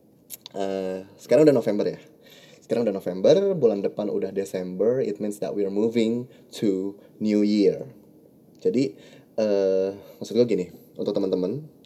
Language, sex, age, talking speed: Indonesian, male, 20-39, 140 wpm